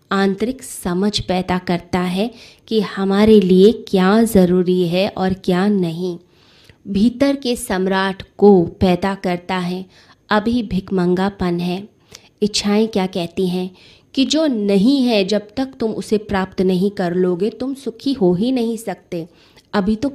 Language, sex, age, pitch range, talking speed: Hindi, female, 20-39, 185-220 Hz, 145 wpm